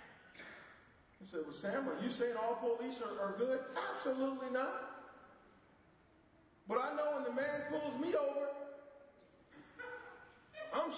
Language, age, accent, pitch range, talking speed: English, 40-59, American, 265-310 Hz, 130 wpm